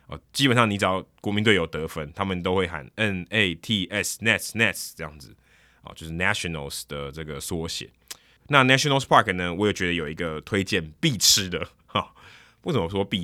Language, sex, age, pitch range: Chinese, male, 20-39, 85-110 Hz